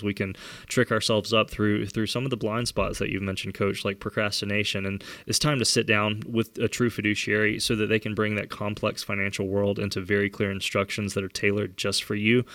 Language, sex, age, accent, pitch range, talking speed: English, male, 20-39, American, 105-120 Hz, 225 wpm